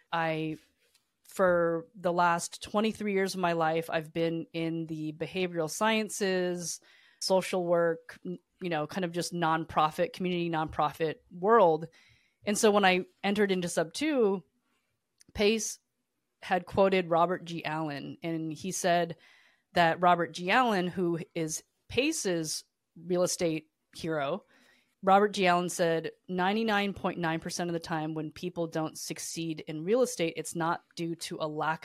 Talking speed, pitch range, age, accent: 140 wpm, 160-190 Hz, 30-49, American